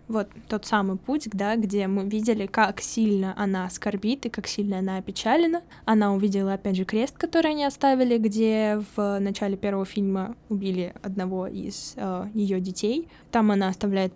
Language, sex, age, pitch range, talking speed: Russian, female, 10-29, 195-230 Hz, 165 wpm